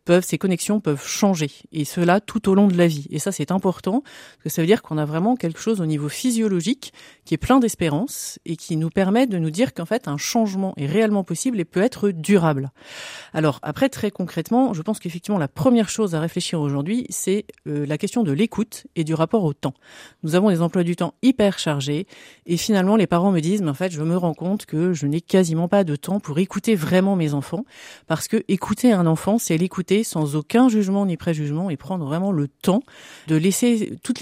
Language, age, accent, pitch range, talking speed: French, 40-59, French, 165-215 Hz, 225 wpm